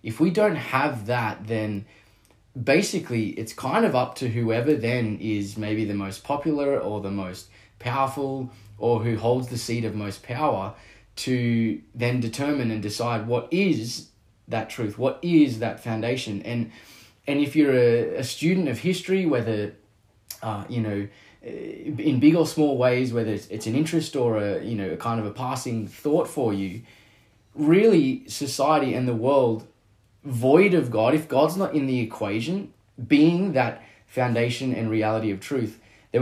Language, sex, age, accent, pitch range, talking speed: English, male, 20-39, Australian, 105-135 Hz, 165 wpm